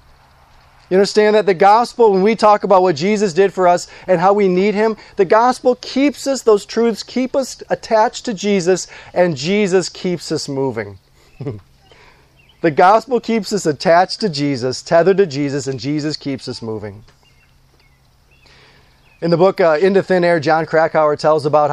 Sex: male